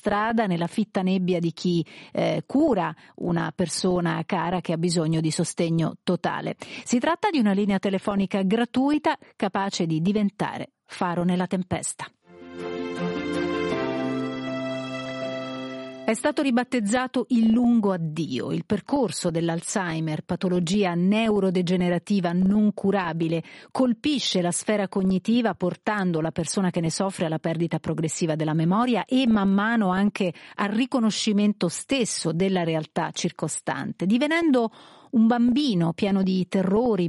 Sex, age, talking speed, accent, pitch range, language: female, 40-59, 120 wpm, native, 170-215 Hz, Italian